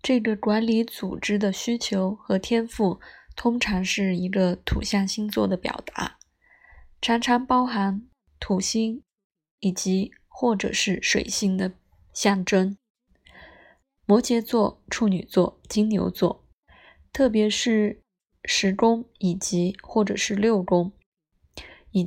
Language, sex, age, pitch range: Chinese, female, 20-39, 180-225 Hz